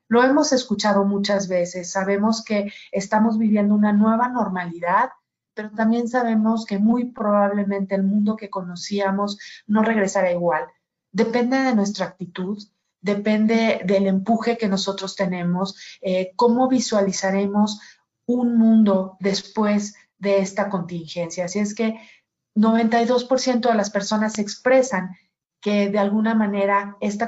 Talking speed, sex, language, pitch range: 125 wpm, female, Spanish, 185-215 Hz